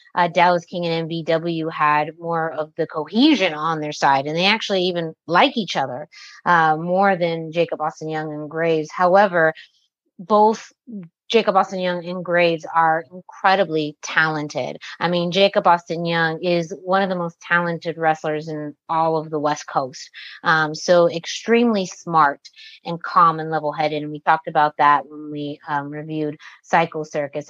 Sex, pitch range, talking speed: female, 155-195 Hz, 165 wpm